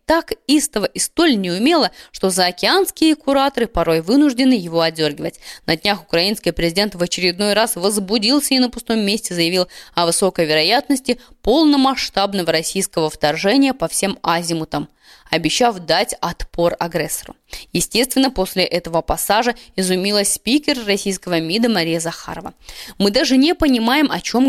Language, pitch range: Russian, 175-250 Hz